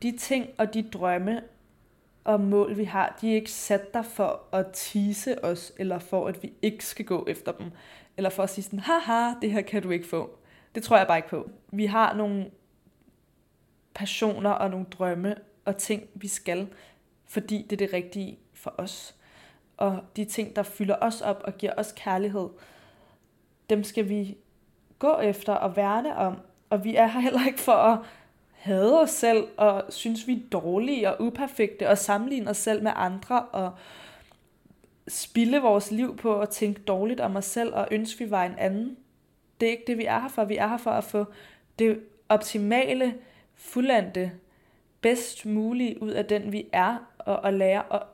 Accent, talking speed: native, 185 wpm